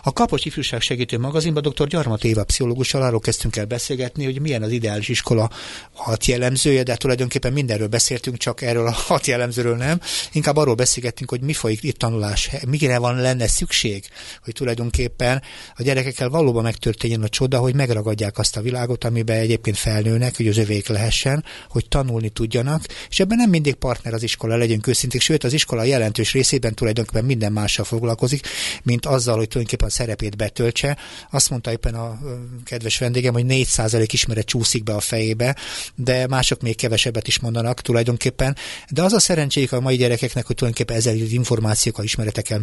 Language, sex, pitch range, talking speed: Hungarian, male, 110-130 Hz, 170 wpm